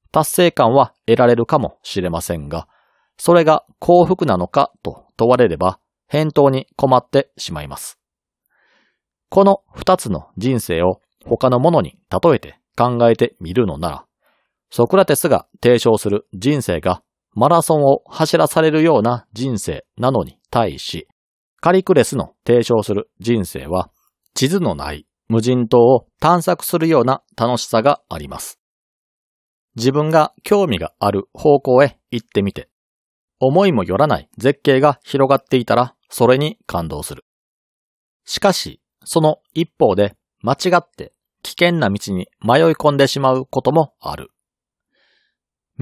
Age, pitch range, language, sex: 40-59, 110-155 Hz, Japanese, male